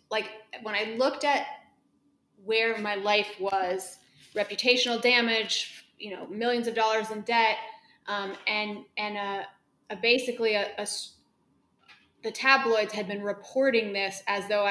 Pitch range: 195-225 Hz